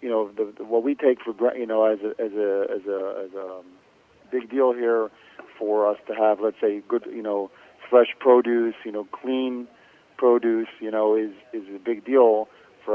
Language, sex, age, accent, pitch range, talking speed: English, male, 40-59, American, 110-125 Hz, 210 wpm